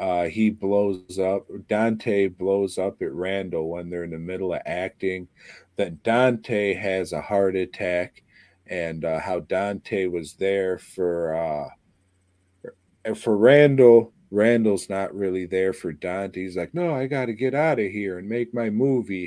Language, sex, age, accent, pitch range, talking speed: English, male, 40-59, American, 90-110 Hz, 160 wpm